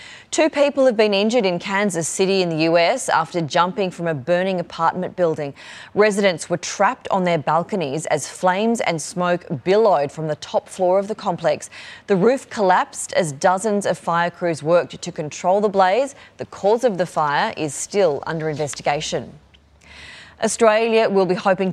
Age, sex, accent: 20-39, female, Australian